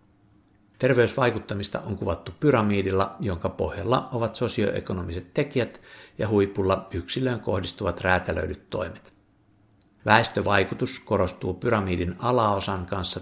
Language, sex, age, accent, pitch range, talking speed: Finnish, male, 60-79, native, 95-110 Hz, 90 wpm